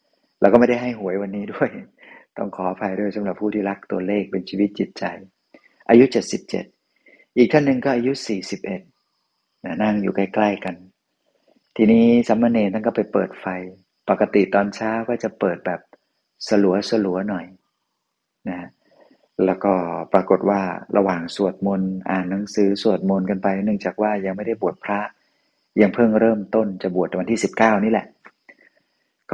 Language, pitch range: Thai, 95-110 Hz